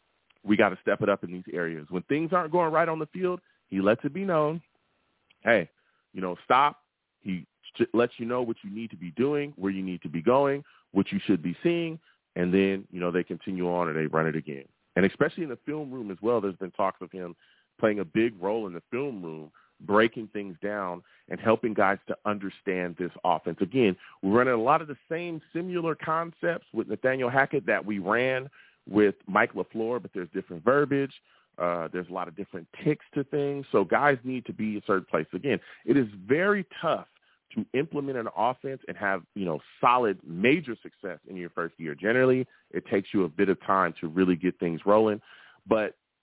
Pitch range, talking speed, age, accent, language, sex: 95-135 Hz, 215 wpm, 30-49, American, English, male